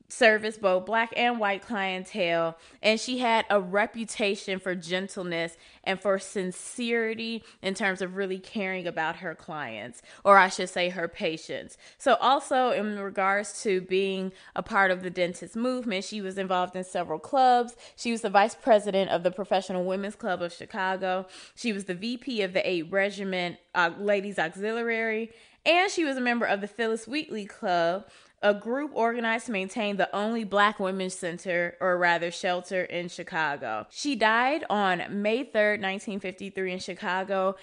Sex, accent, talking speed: female, American, 165 wpm